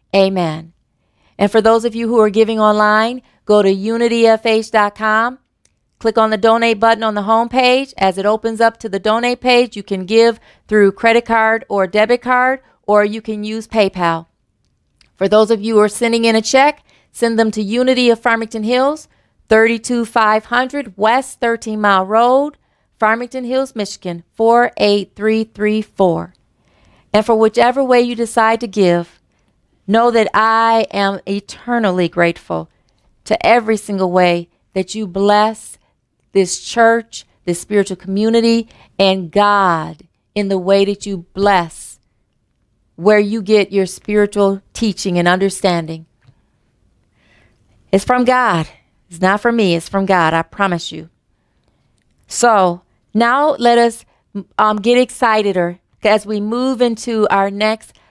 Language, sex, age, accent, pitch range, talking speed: English, female, 40-59, American, 195-230 Hz, 145 wpm